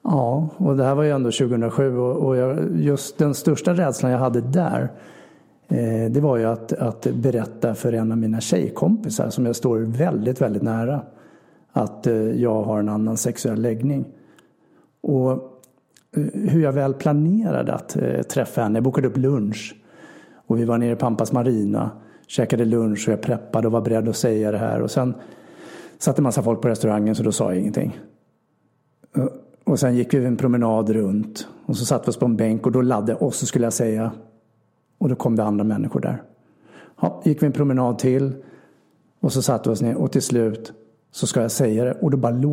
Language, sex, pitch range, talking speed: Swedish, male, 115-140 Hz, 200 wpm